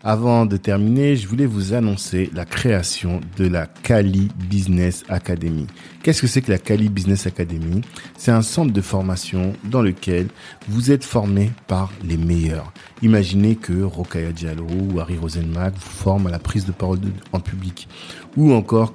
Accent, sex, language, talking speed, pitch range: French, male, French, 170 wpm, 90-105 Hz